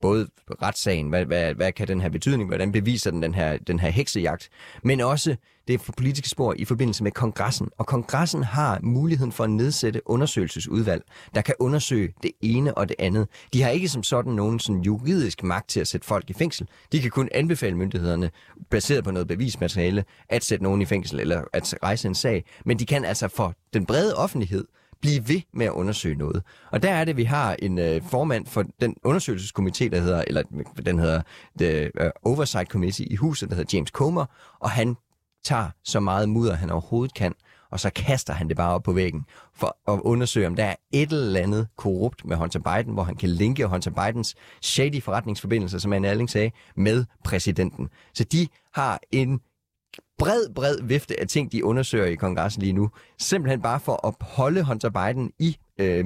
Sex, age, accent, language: male, 30-49, native, Danish